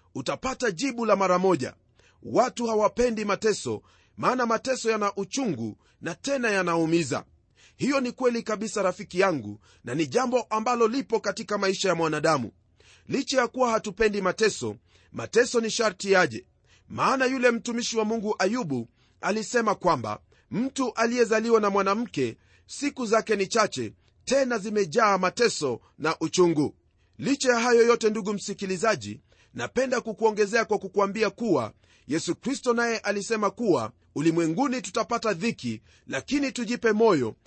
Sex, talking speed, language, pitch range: male, 130 wpm, Swahili, 155-235 Hz